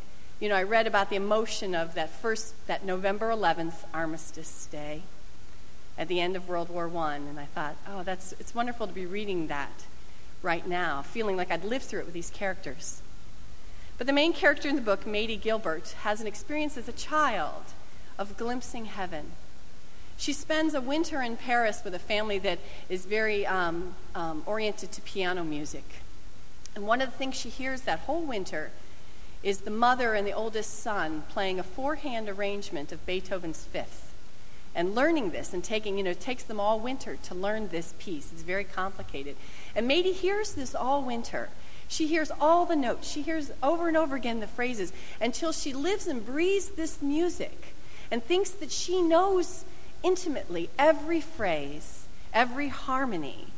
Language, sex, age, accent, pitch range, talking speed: English, female, 40-59, American, 180-280 Hz, 180 wpm